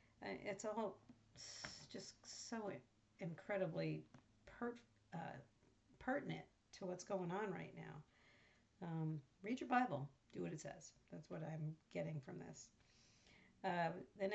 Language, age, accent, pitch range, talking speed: English, 50-69, American, 155-195 Hz, 125 wpm